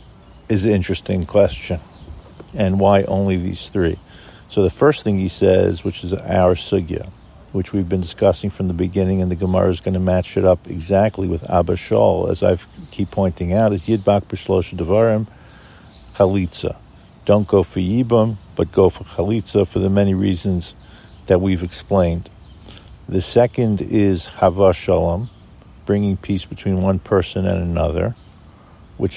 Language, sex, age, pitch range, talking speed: English, male, 50-69, 90-100 Hz, 155 wpm